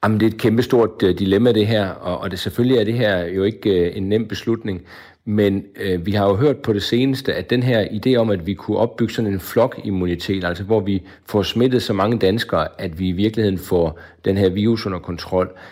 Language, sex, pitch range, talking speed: Danish, male, 95-115 Hz, 215 wpm